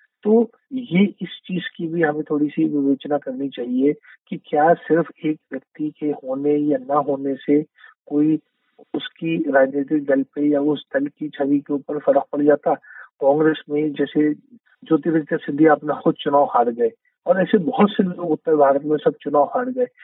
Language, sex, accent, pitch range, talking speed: Hindi, male, native, 145-180 Hz, 175 wpm